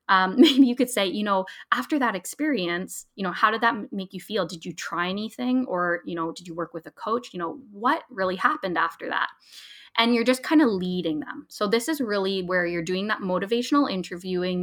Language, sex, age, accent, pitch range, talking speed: English, female, 20-39, American, 180-225 Hz, 225 wpm